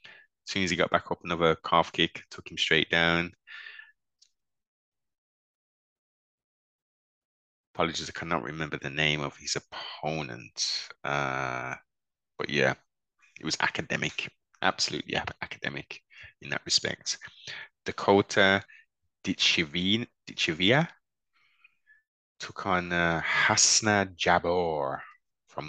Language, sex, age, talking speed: English, male, 20-39, 100 wpm